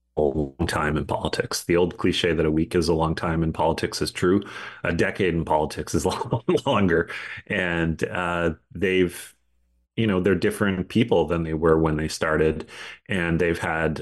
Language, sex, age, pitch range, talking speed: English, male, 30-49, 80-90 Hz, 175 wpm